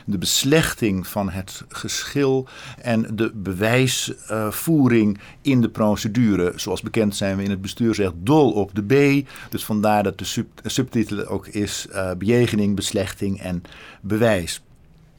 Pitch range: 105-135 Hz